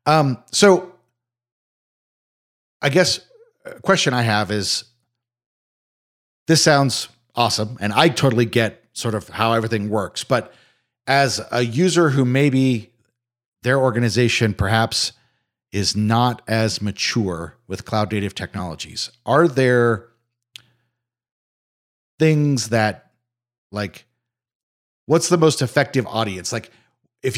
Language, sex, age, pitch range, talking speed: English, male, 40-59, 105-125 Hz, 110 wpm